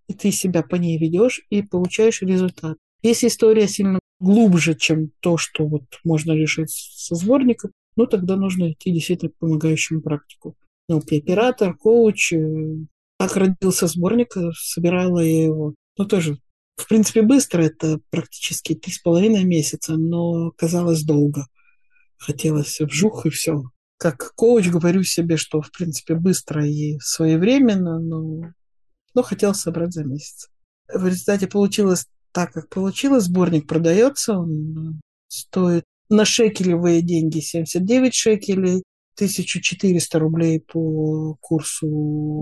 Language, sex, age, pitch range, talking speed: Russian, male, 50-69, 160-200 Hz, 125 wpm